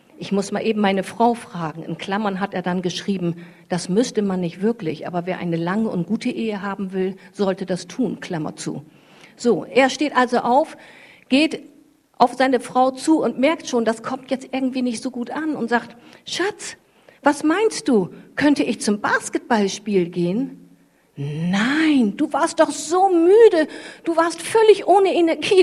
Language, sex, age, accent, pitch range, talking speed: German, female, 50-69, German, 200-295 Hz, 175 wpm